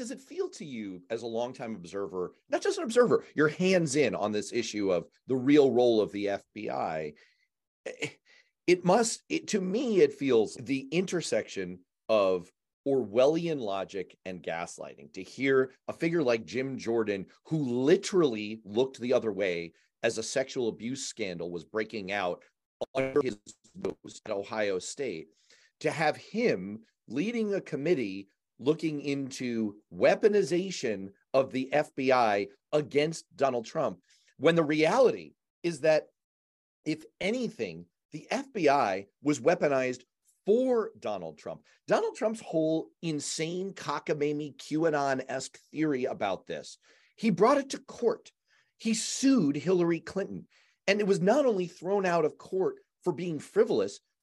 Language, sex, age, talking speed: English, male, 30-49, 135 wpm